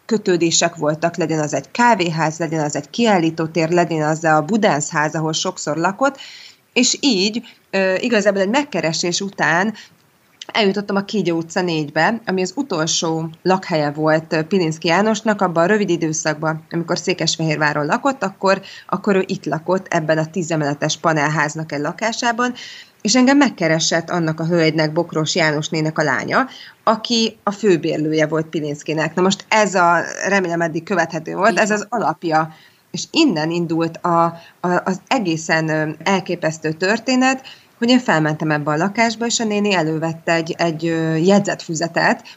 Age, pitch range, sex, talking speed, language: 20-39, 160-200 Hz, female, 140 wpm, Hungarian